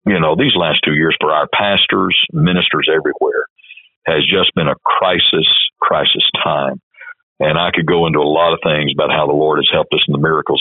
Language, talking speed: English, 210 wpm